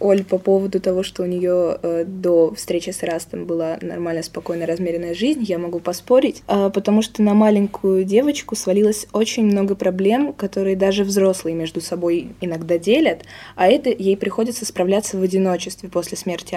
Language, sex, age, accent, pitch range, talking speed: Russian, female, 20-39, native, 180-215 Hz, 165 wpm